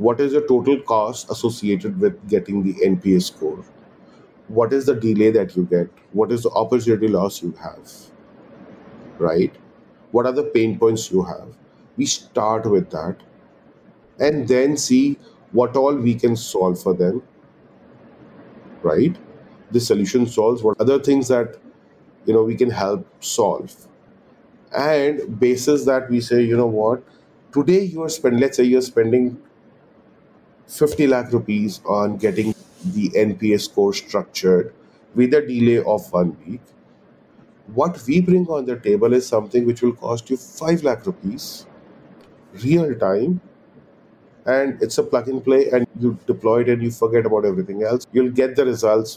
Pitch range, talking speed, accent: 110-135 Hz, 160 wpm, Indian